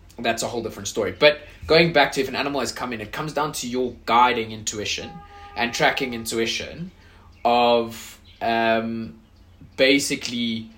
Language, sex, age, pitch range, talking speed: English, male, 20-39, 95-125 Hz, 155 wpm